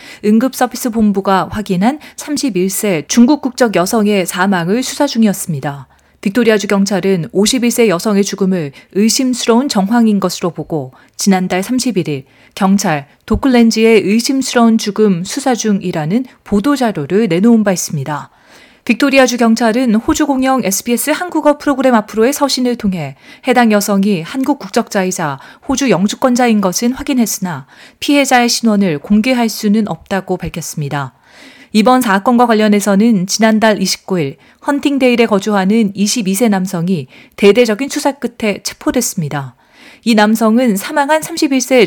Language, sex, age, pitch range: Korean, female, 40-59, 190-250 Hz